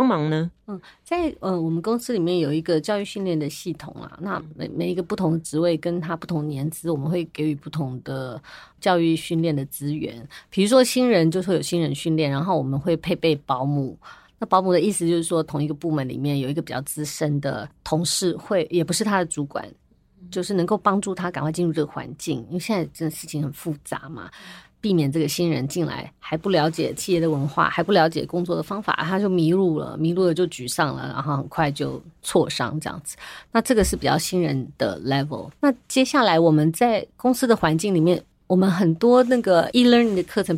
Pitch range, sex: 155-185 Hz, female